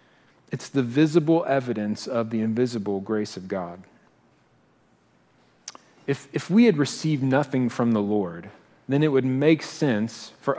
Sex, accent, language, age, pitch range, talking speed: male, American, English, 40-59, 130-185 Hz, 140 wpm